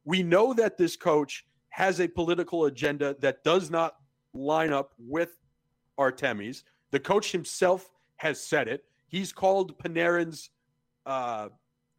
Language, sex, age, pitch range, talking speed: English, male, 40-59, 145-185 Hz, 130 wpm